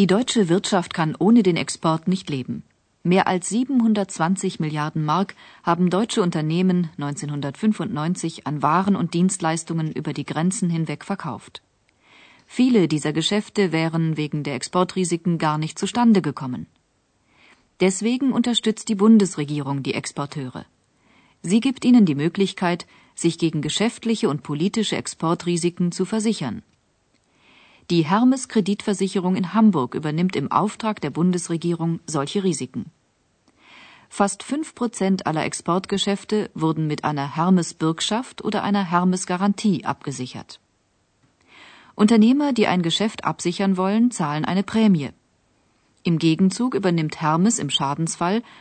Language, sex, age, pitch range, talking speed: Urdu, female, 40-59, 150-200 Hz, 115 wpm